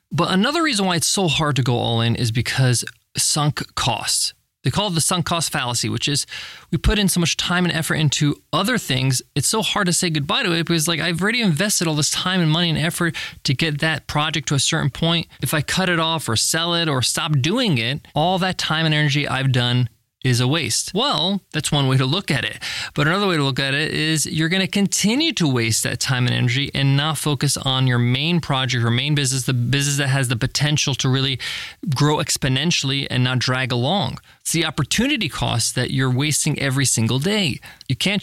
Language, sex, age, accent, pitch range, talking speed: English, male, 20-39, American, 130-165 Hz, 230 wpm